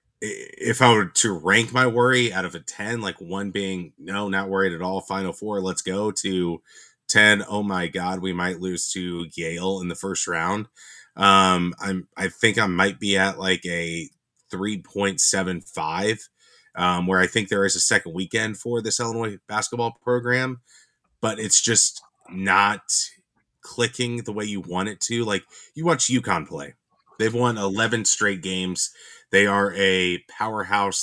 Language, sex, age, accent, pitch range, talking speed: English, male, 30-49, American, 90-115 Hz, 170 wpm